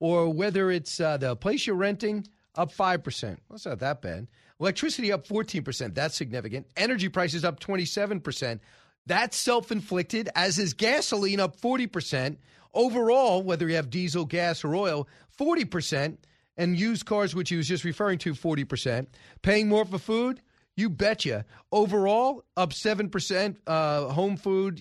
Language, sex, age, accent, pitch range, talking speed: English, male, 40-59, American, 150-200 Hz, 150 wpm